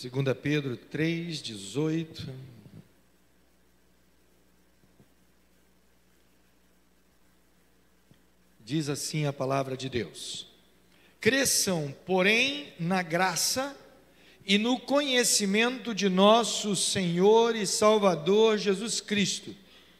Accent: Brazilian